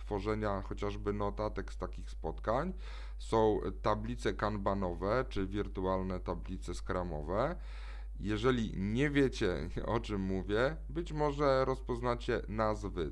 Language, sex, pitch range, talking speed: Polish, male, 95-125 Hz, 105 wpm